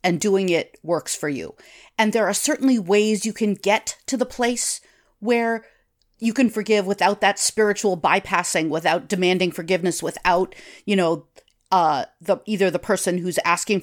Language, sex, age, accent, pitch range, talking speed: English, female, 40-59, American, 165-200 Hz, 165 wpm